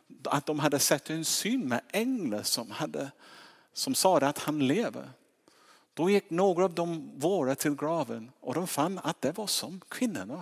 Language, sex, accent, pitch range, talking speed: Swedish, male, Norwegian, 125-165 Hz, 175 wpm